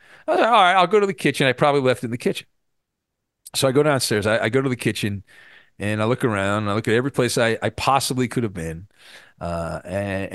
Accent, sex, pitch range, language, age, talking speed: American, male, 105-140 Hz, English, 40-59, 260 wpm